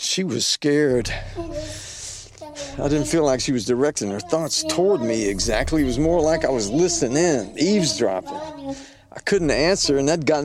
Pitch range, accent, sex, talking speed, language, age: 115-160 Hz, American, male, 170 wpm, English, 50-69